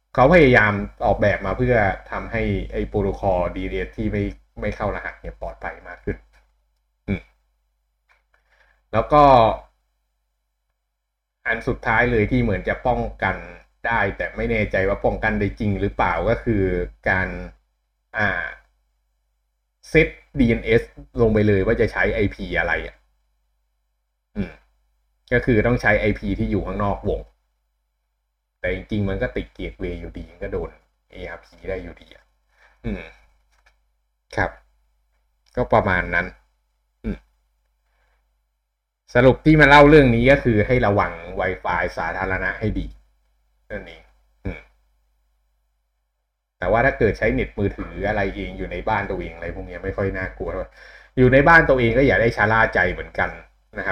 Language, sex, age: Thai, male, 20-39